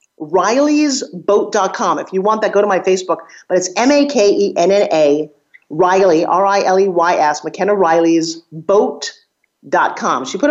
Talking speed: 115 wpm